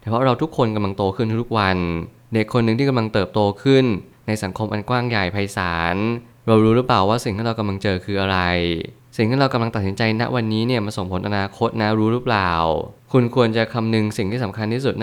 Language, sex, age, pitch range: Thai, male, 20-39, 100-120 Hz